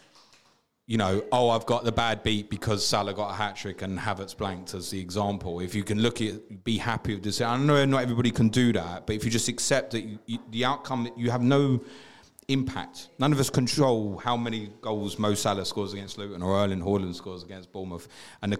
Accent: British